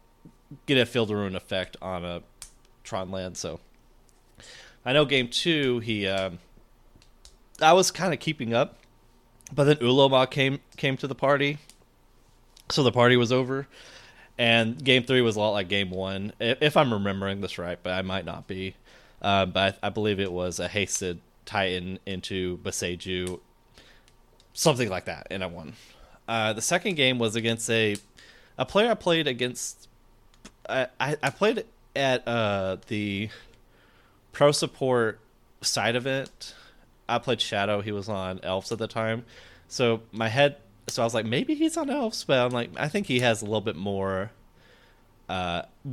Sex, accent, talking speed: male, American, 170 wpm